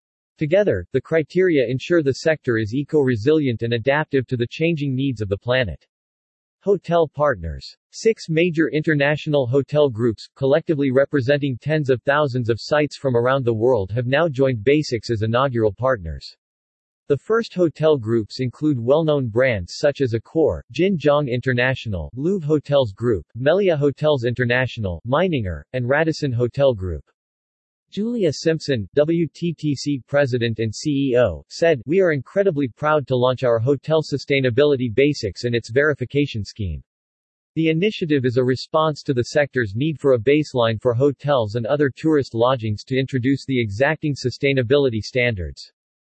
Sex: male